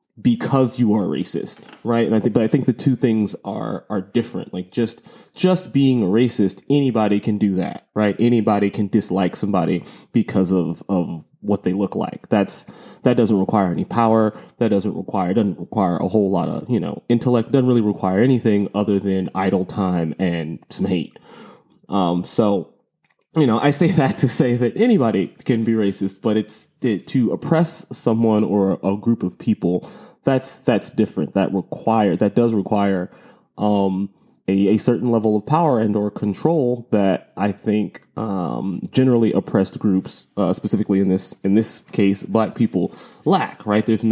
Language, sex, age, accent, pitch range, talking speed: English, male, 20-39, American, 95-120 Hz, 175 wpm